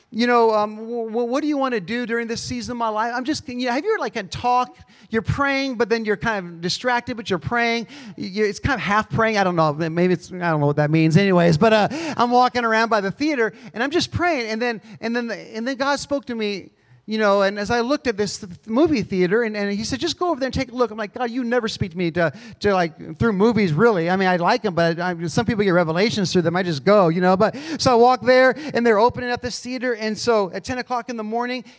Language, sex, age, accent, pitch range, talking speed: English, male, 40-59, American, 195-250 Hz, 295 wpm